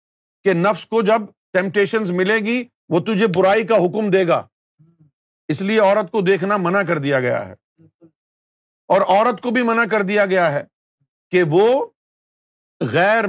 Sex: male